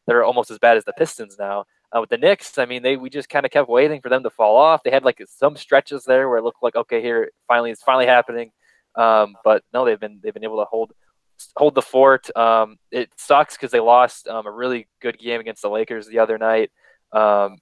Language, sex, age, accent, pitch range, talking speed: English, male, 20-39, American, 110-140 Hz, 250 wpm